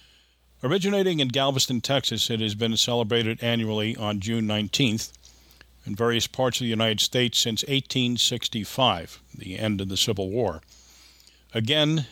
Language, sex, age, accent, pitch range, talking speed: English, male, 50-69, American, 95-120 Hz, 140 wpm